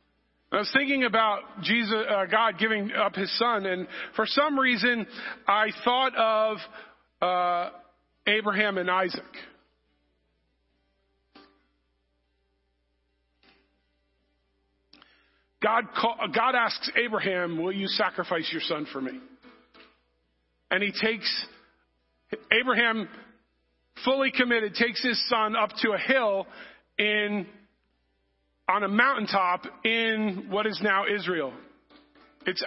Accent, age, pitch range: American, 40-59, 175-225 Hz